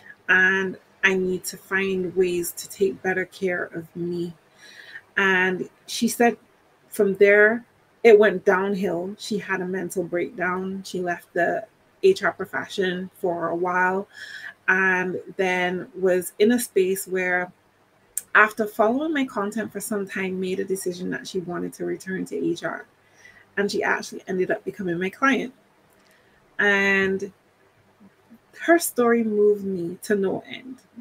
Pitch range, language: 180-210 Hz, English